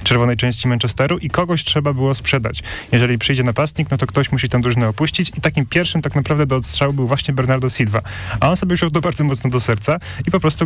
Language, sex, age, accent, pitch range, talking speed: Polish, male, 30-49, native, 120-145 Hz, 230 wpm